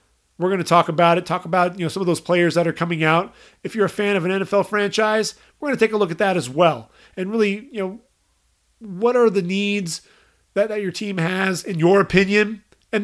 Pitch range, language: 170-200 Hz, English